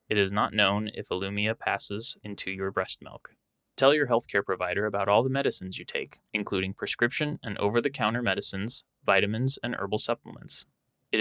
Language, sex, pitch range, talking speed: English, male, 95-120 Hz, 165 wpm